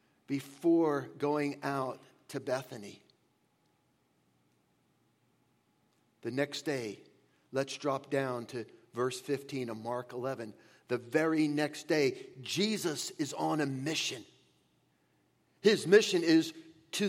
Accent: American